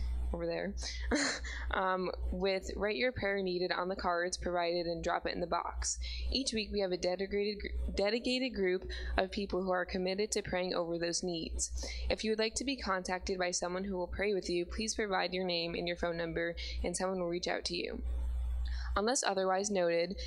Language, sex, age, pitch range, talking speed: English, female, 20-39, 165-195 Hz, 200 wpm